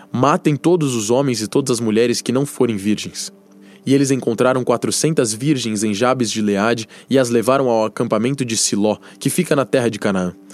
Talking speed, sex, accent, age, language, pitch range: 195 wpm, male, Brazilian, 20-39, Portuguese, 105-135 Hz